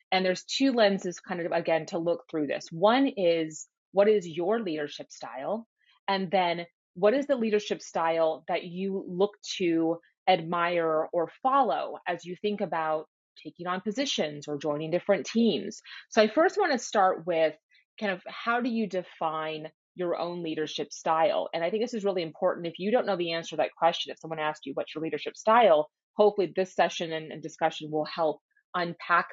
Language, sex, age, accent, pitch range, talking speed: English, female, 30-49, American, 160-210 Hz, 190 wpm